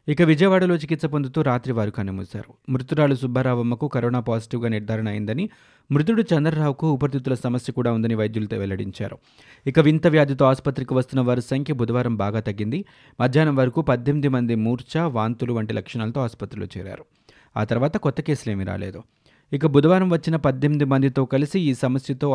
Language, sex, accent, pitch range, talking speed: Telugu, male, native, 115-145 Hz, 150 wpm